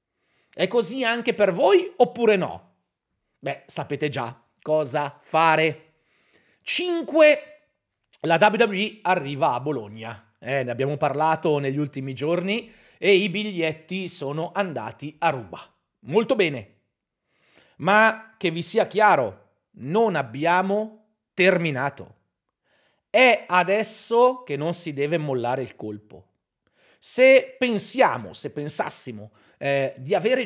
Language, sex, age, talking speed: Italian, male, 40-59, 115 wpm